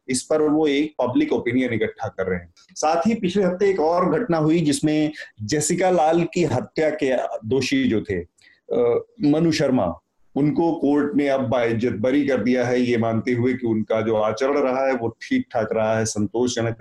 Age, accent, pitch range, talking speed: 30-49, native, 110-145 Hz, 180 wpm